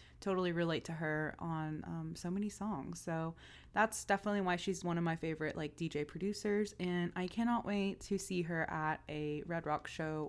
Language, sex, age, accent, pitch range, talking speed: English, female, 20-39, American, 160-205 Hz, 190 wpm